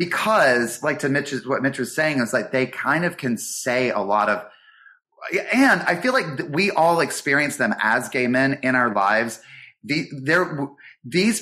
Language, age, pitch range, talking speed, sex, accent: English, 30-49, 130-170 Hz, 185 wpm, male, American